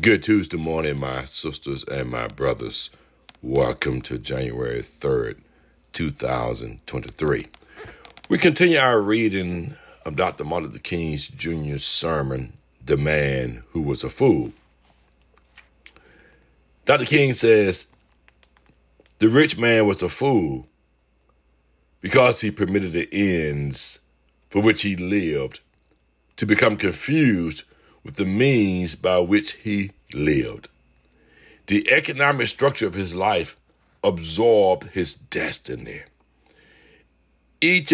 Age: 60-79